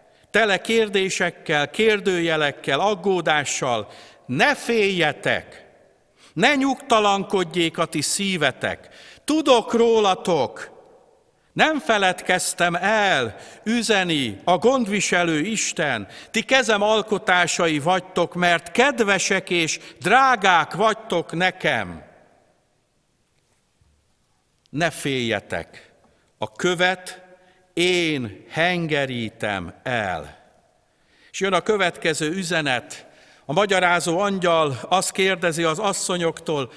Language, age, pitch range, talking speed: Hungarian, 60-79, 150-200 Hz, 80 wpm